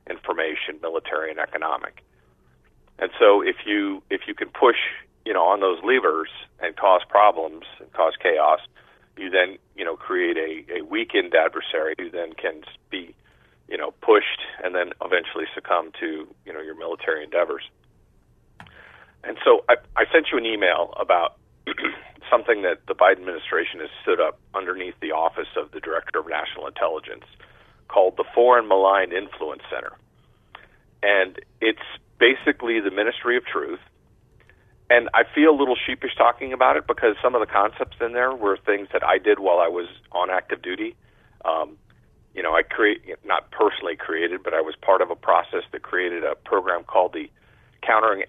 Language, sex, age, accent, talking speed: English, male, 50-69, American, 170 wpm